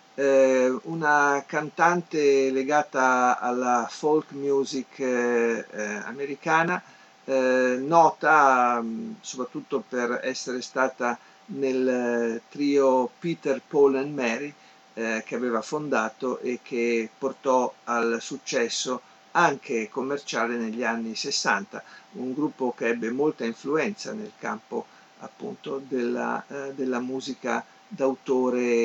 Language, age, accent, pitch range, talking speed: Italian, 50-69, native, 120-150 Hz, 90 wpm